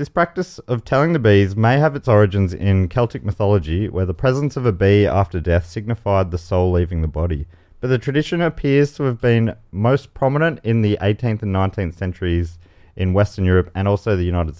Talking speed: 200 wpm